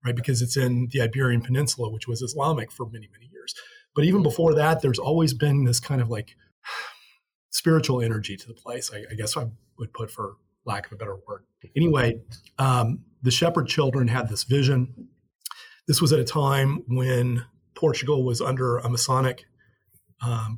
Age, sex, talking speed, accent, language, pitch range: 30-49, male, 180 wpm, American, English, 120-140 Hz